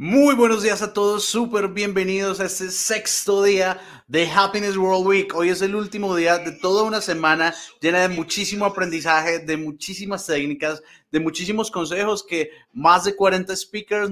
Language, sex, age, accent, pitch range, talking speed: Spanish, male, 30-49, Colombian, 145-185 Hz, 165 wpm